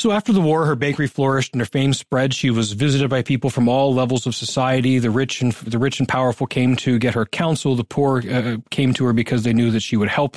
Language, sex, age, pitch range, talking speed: English, male, 30-49, 115-140 Hz, 265 wpm